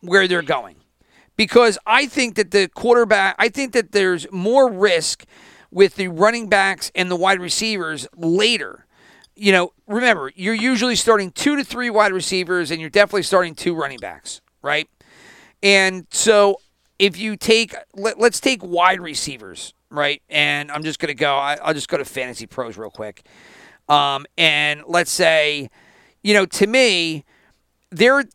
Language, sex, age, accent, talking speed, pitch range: English, male, 40-59, American, 160 wpm, 165-215 Hz